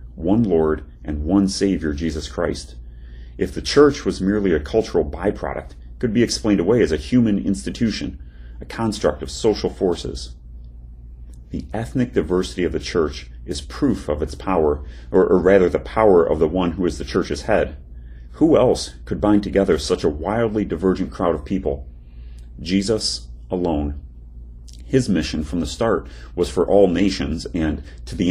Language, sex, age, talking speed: English, male, 40-59, 165 wpm